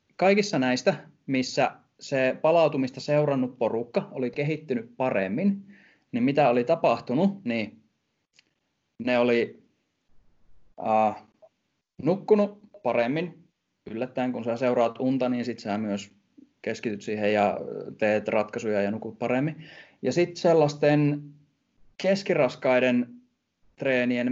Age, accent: 20-39, native